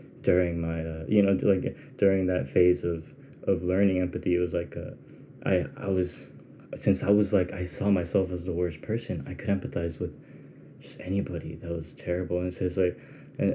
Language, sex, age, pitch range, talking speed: English, male, 20-39, 90-105 Hz, 195 wpm